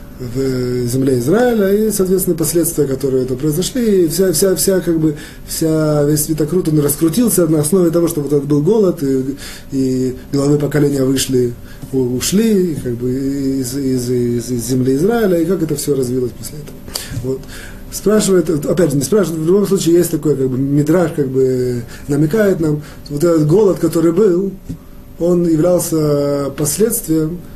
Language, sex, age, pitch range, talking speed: Russian, male, 30-49, 130-180 Hz, 165 wpm